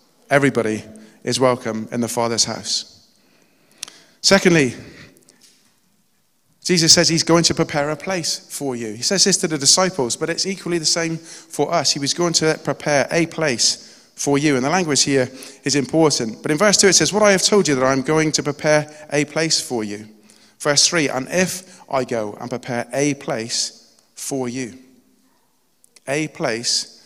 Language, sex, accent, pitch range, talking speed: English, male, British, 130-170 Hz, 175 wpm